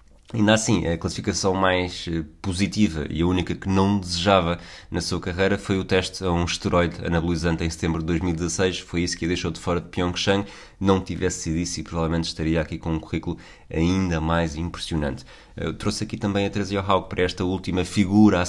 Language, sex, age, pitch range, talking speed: Portuguese, male, 20-39, 85-95 Hz, 195 wpm